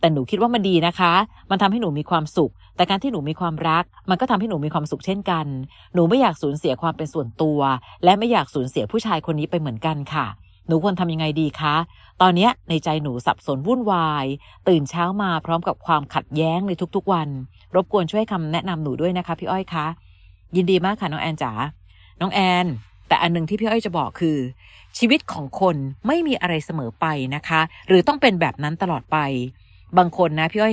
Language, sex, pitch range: Thai, female, 145-185 Hz